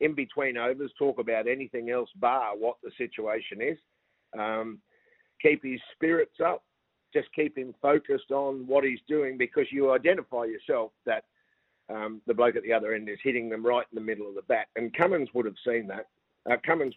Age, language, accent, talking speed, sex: 50-69, English, Australian, 195 wpm, male